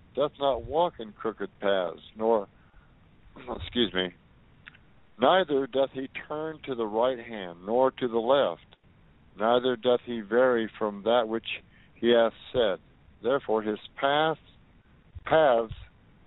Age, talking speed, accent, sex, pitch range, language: 60-79, 125 wpm, American, male, 100-125 Hz, English